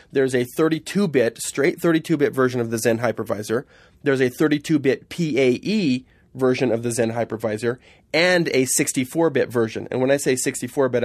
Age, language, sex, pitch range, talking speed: 30-49, English, male, 120-145 Hz, 150 wpm